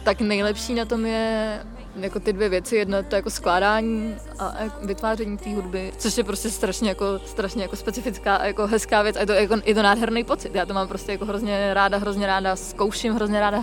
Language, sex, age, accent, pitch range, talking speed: Czech, female, 20-39, native, 190-210 Hz, 215 wpm